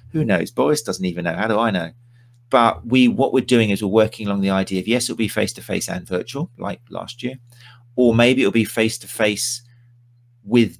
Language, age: English, 40-59